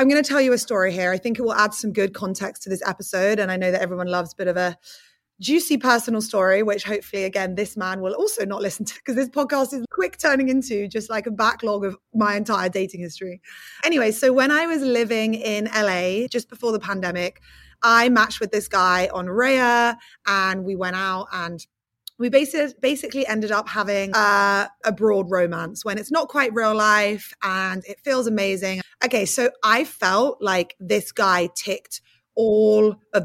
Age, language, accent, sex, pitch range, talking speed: 20-39, English, British, female, 190-245 Hz, 200 wpm